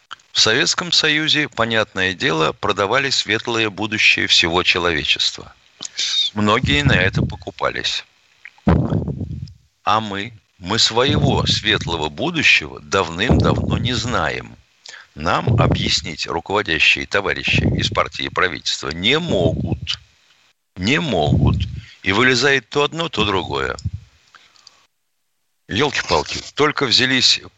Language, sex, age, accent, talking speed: Russian, male, 50-69, native, 95 wpm